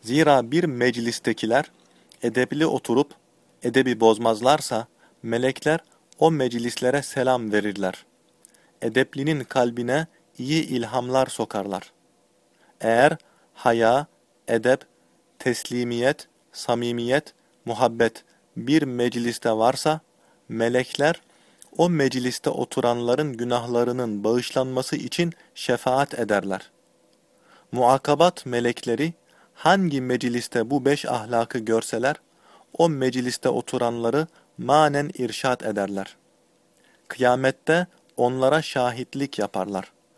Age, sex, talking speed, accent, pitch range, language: 40-59, male, 80 wpm, native, 120-145 Hz, Turkish